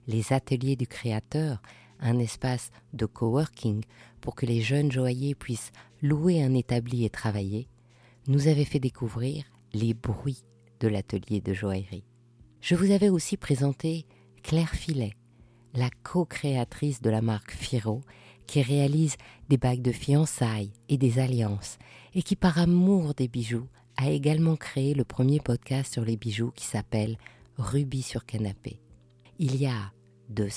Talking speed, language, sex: 145 wpm, French, female